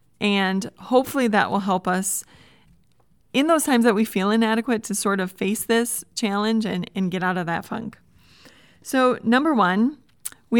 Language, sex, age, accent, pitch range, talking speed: English, female, 30-49, American, 195-235 Hz, 170 wpm